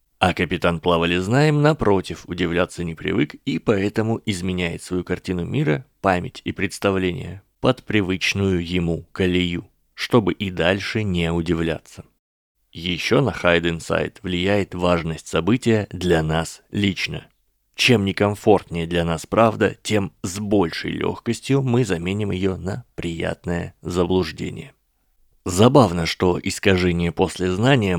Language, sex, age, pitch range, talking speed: Russian, male, 20-39, 85-95 Hz, 115 wpm